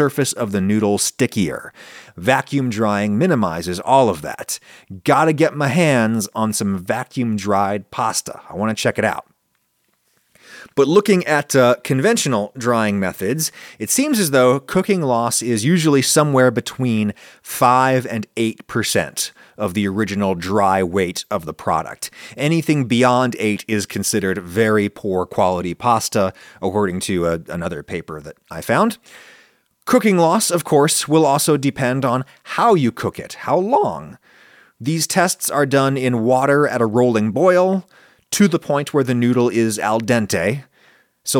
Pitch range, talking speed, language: 105-145 Hz, 150 wpm, English